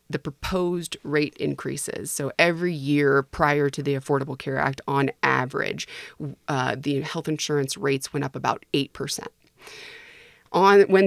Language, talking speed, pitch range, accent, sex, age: English, 140 wpm, 140-160 Hz, American, female, 30-49